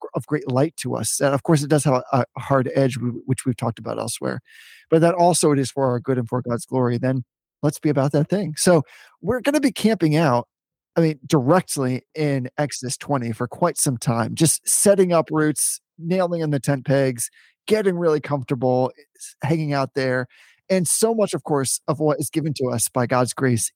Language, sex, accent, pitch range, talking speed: English, male, American, 130-165 Hz, 210 wpm